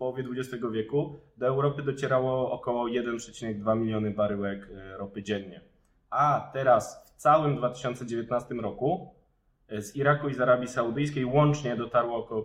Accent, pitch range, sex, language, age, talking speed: native, 105-130 Hz, male, Polish, 20-39, 135 wpm